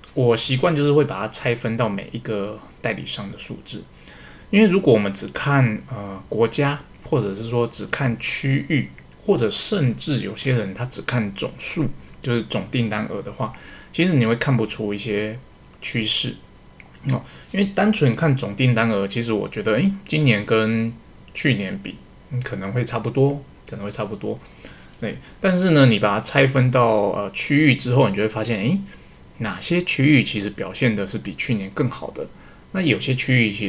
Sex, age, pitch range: male, 20-39, 105-135 Hz